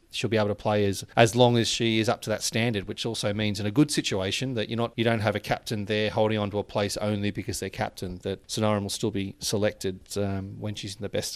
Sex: male